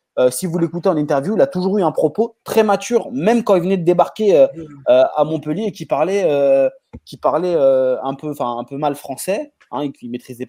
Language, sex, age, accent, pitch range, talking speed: French, male, 20-39, French, 140-200 Hz, 245 wpm